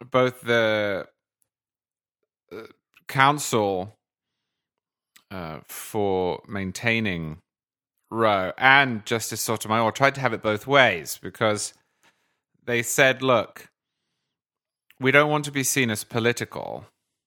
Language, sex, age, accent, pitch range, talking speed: English, male, 30-49, British, 105-125 Hz, 95 wpm